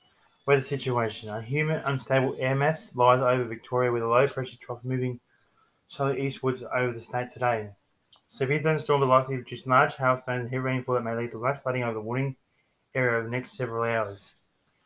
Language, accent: English, Australian